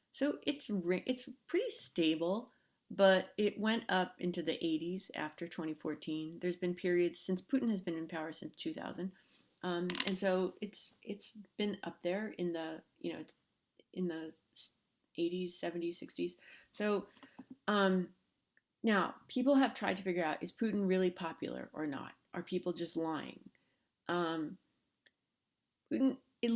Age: 30-49